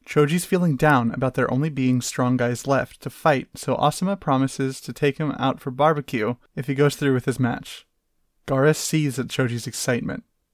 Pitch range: 130-150 Hz